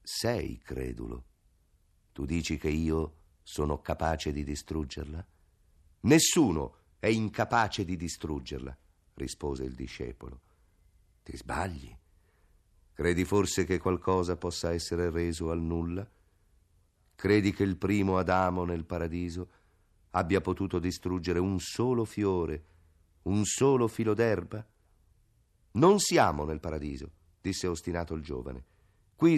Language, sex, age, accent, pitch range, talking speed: Italian, male, 50-69, native, 80-100 Hz, 110 wpm